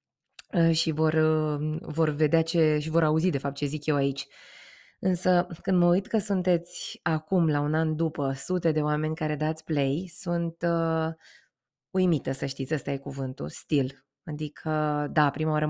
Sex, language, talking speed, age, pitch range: female, Romanian, 170 wpm, 20-39, 145-170 Hz